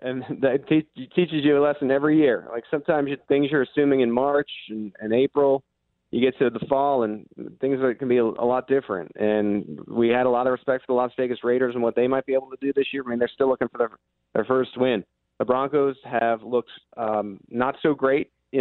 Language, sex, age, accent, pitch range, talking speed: English, male, 30-49, American, 115-135 Hz, 230 wpm